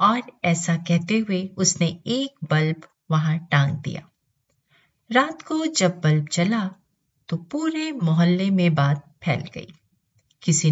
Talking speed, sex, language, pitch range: 130 wpm, female, Hindi, 150-210 Hz